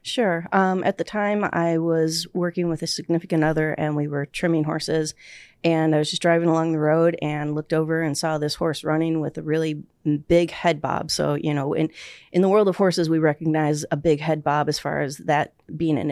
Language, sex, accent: English, female, American